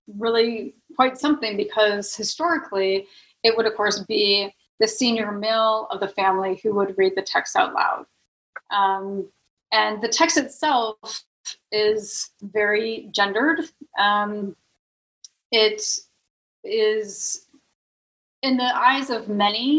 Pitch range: 200-250 Hz